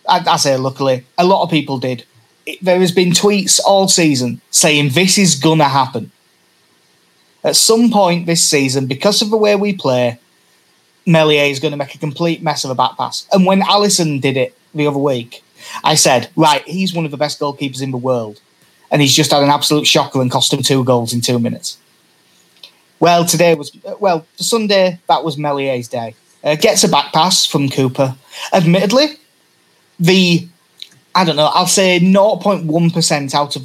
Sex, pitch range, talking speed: male, 135-180 Hz, 185 wpm